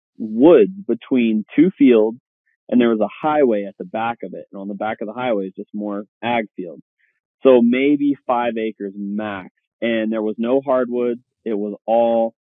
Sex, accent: male, American